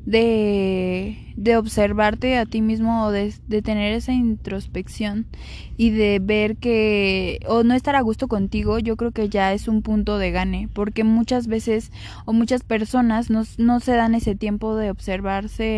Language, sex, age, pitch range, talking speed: Spanish, female, 10-29, 205-230 Hz, 170 wpm